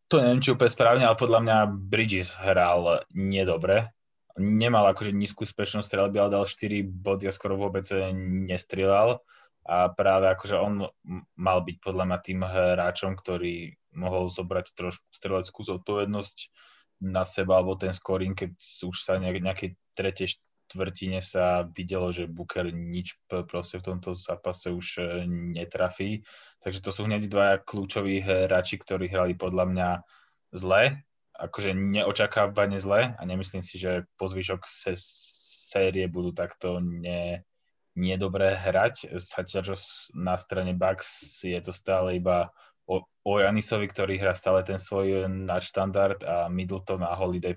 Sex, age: male, 20-39